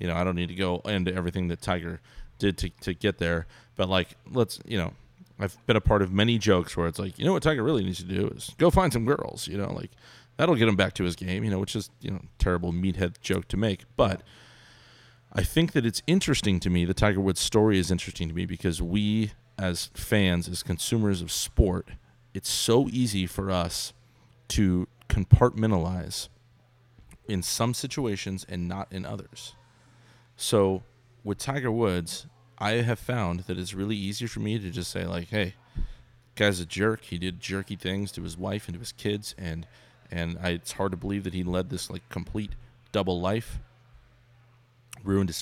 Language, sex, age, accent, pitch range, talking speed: English, male, 30-49, American, 90-115 Hz, 200 wpm